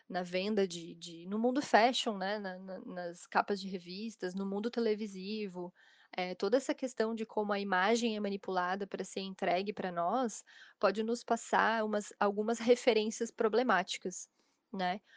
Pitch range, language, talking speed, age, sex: 185-225 Hz, Vietnamese, 140 wpm, 10-29, female